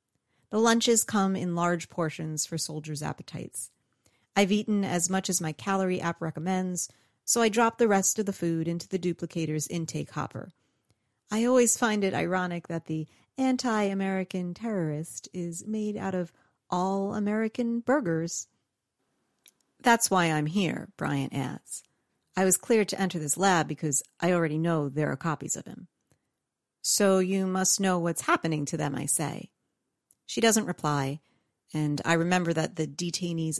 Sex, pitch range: female, 150-190 Hz